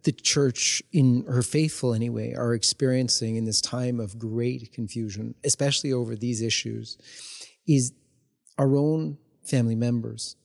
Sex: male